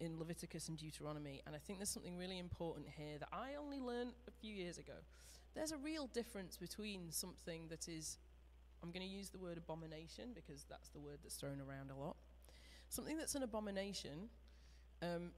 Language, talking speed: English, 190 wpm